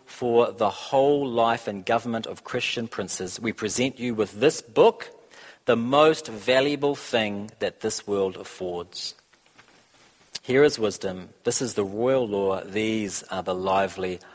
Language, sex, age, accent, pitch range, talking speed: English, male, 40-59, Australian, 95-130 Hz, 145 wpm